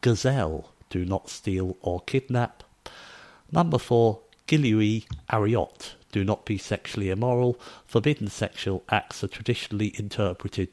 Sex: male